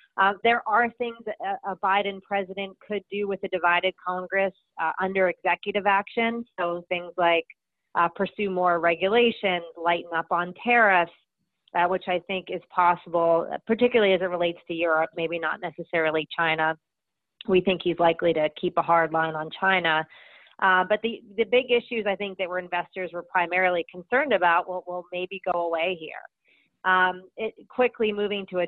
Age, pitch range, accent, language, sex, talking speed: 30-49, 170-195 Hz, American, English, female, 170 wpm